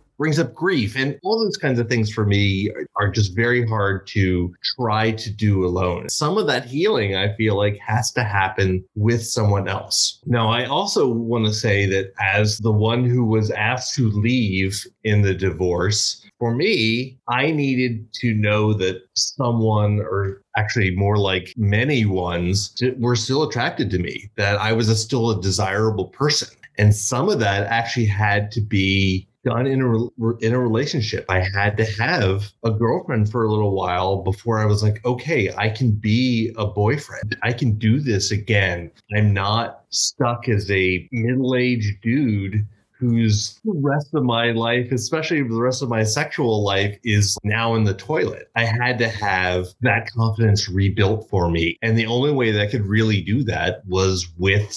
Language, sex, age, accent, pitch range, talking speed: English, male, 30-49, American, 100-120 Hz, 180 wpm